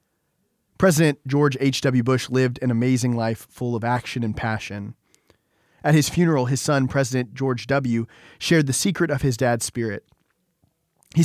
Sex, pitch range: male, 115-140 Hz